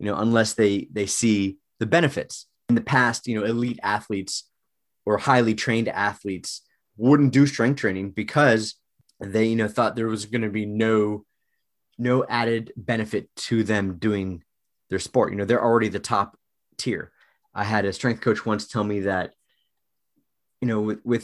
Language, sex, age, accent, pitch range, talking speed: English, male, 20-39, American, 100-120 Hz, 170 wpm